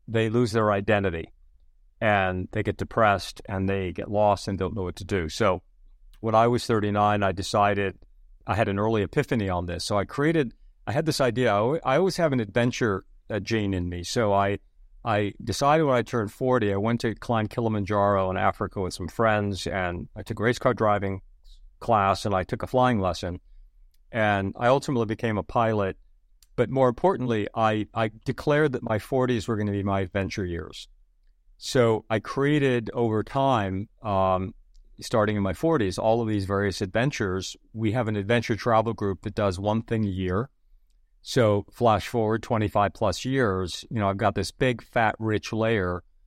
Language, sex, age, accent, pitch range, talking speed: English, male, 50-69, American, 95-115 Hz, 185 wpm